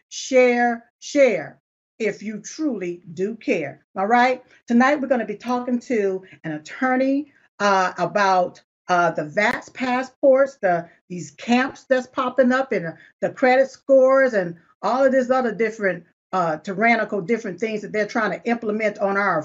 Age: 50-69